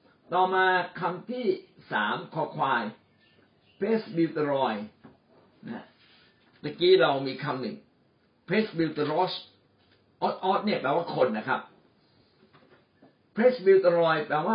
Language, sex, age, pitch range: Thai, male, 60-79, 150-205 Hz